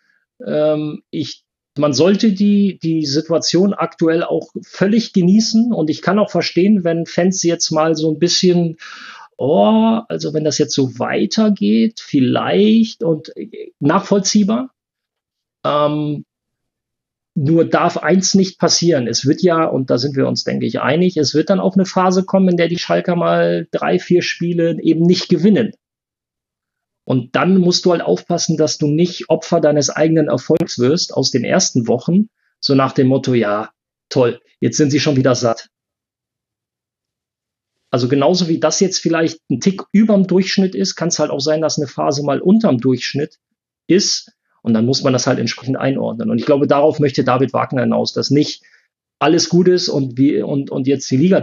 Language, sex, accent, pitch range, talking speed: German, male, German, 135-180 Hz, 175 wpm